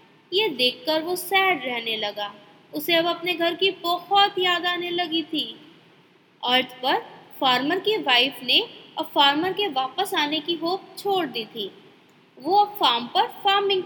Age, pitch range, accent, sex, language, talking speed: 20-39, 280-395 Hz, native, female, Hindi, 160 wpm